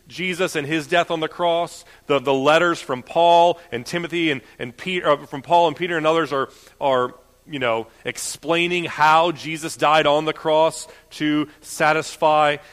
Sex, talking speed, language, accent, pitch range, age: male, 170 wpm, English, American, 120-155 Hz, 30-49